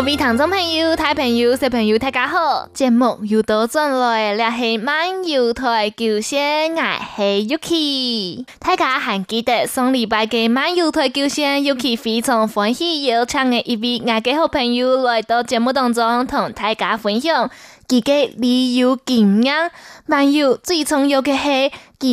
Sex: female